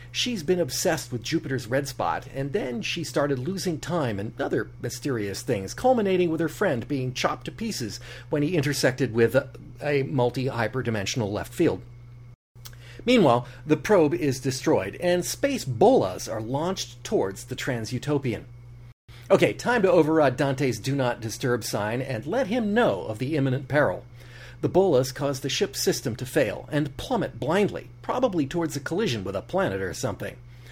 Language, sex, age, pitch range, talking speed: English, male, 40-59, 120-185 Hz, 165 wpm